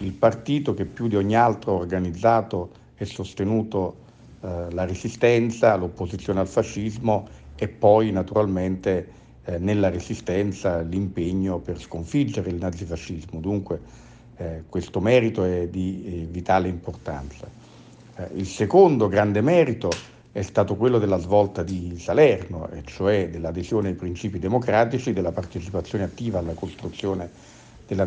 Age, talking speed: 50-69, 130 wpm